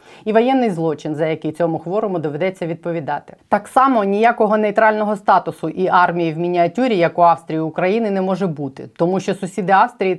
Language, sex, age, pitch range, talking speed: Ukrainian, female, 20-39, 155-185 Hz, 175 wpm